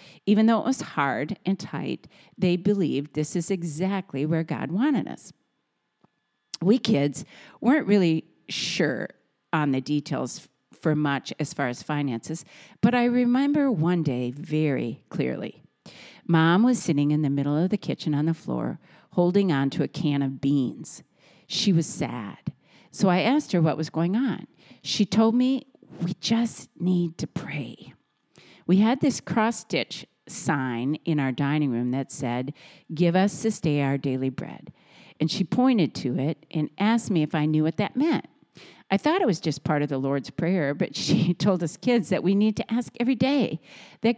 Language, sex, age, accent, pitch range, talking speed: English, female, 50-69, American, 145-210 Hz, 175 wpm